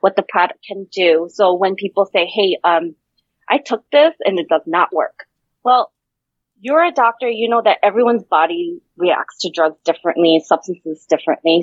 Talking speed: 175 wpm